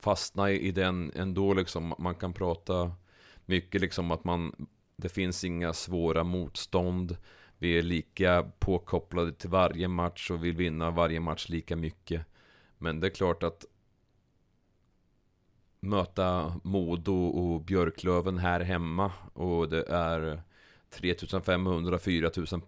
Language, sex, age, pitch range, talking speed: Swedish, male, 30-49, 80-90 Hz, 115 wpm